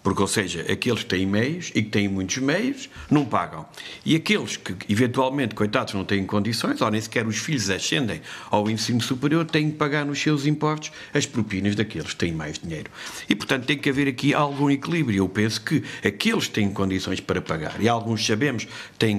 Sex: male